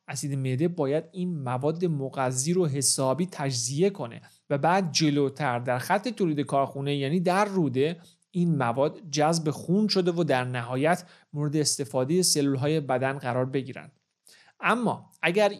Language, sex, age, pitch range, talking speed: Persian, male, 40-59, 140-180 Hz, 140 wpm